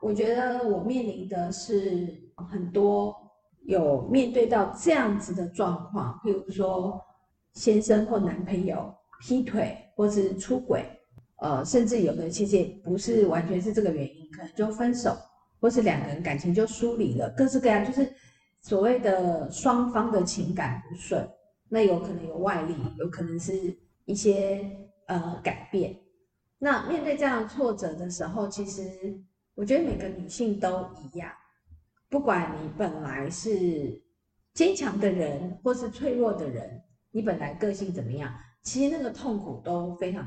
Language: Chinese